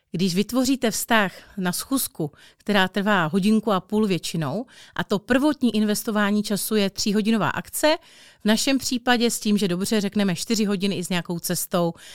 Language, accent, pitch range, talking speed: Czech, native, 175-215 Hz, 165 wpm